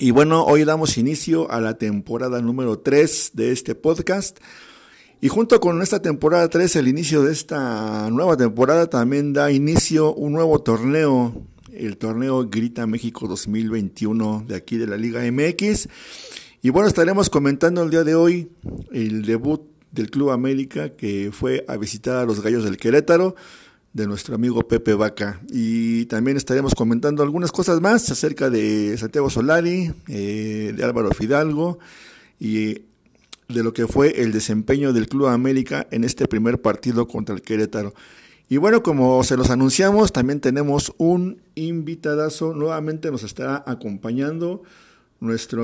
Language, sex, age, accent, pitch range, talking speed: Spanish, male, 50-69, Mexican, 115-160 Hz, 155 wpm